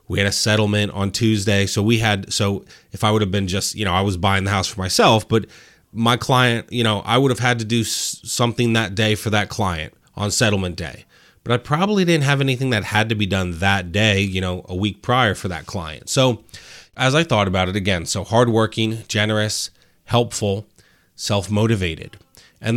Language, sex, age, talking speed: English, male, 30-49, 210 wpm